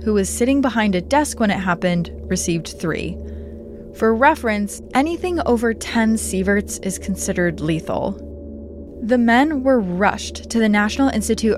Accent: American